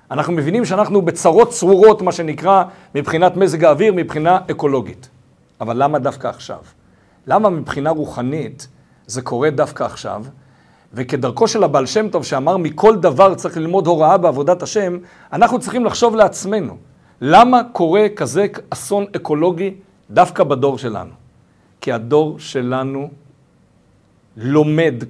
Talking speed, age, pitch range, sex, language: 125 wpm, 60-79, 150-210 Hz, male, Hebrew